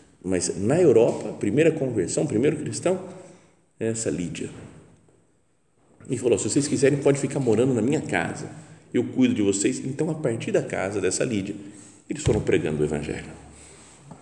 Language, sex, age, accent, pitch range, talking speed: Portuguese, male, 40-59, Brazilian, 100-150 Hz, 165 wpm